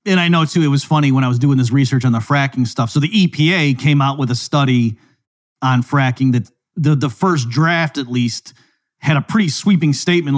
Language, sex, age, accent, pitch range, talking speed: English, male, 40-59, American, 135-160 Hz, 225 wpm